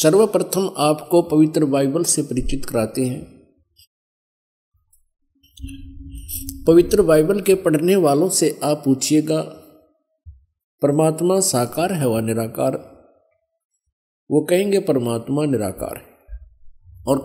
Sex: male